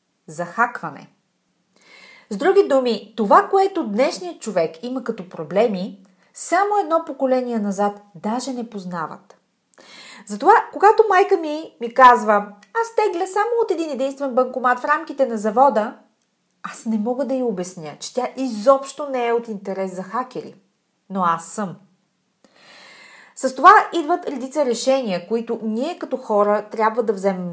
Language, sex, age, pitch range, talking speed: Bulgarian, female, 30-49, 195-275 Hz, 145 wpm